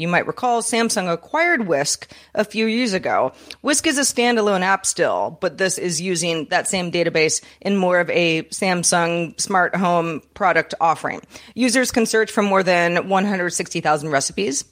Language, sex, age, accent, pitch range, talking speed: English, female, 30-49, American, 170-205 Hz, 165 wpm